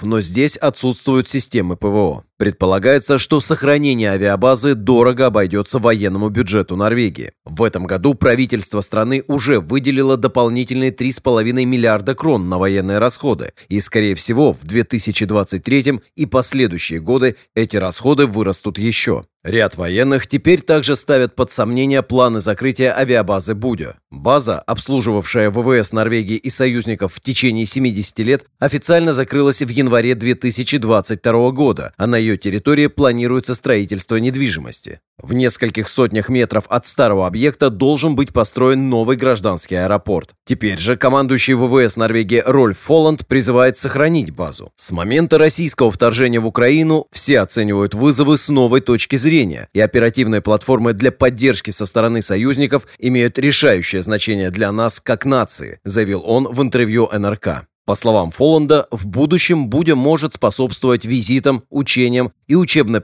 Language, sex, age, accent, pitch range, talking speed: Russian, male, 30-49, native, 105-135 Hz, 135 wpm